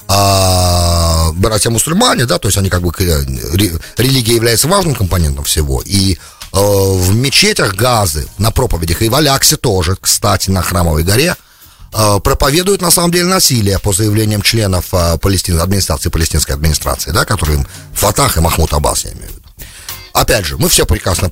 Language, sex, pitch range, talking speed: English, male, 85-130 Hz, 150 wpm